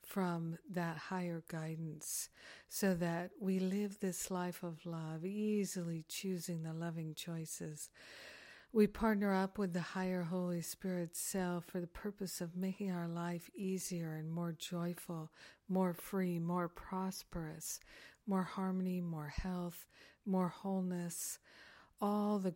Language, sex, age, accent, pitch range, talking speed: English, female, 60-79, American, 170-190 Hz, 130 wpm